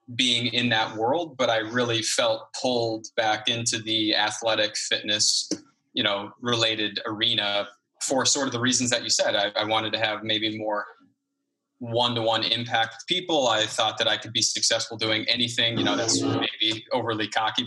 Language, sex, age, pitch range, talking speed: English, male, 20-39, 110-125 Hz, 175 wpm